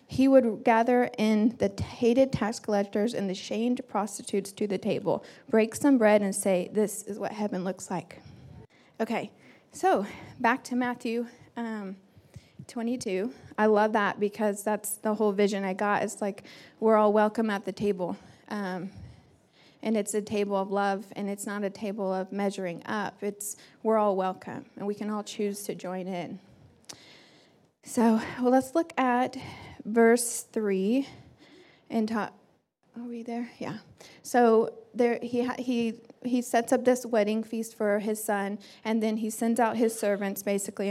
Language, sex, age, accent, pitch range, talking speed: English, female, 20-39, American, 200-235 Hz, 165 wpm